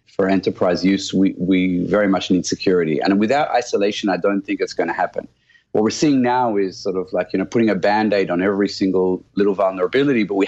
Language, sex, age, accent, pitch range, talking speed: English, male, 30-49, Australian, 90-110 Hz, 225 wpm